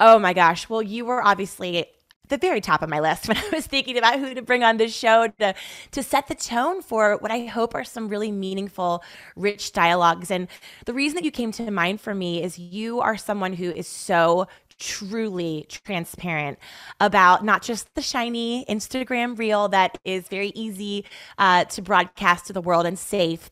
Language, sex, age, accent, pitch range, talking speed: English, female, 20-39, American, 180-225 Hz, 200 wpm